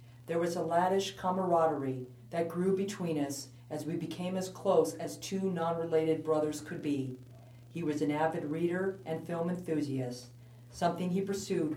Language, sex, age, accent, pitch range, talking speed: English, female, 40-59, American, 130-170 Hz, 160 wpm